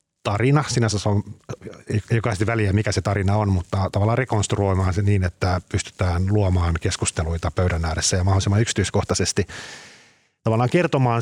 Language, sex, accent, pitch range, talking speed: Finnish, male, native, 95-115 Hz, 140 wpm